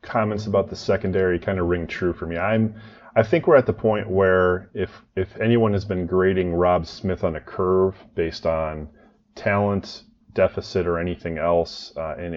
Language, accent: English, American